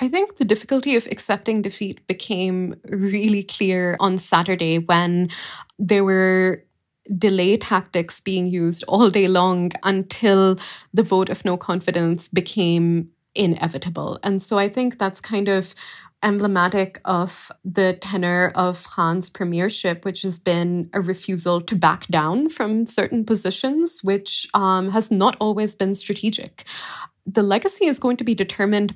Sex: female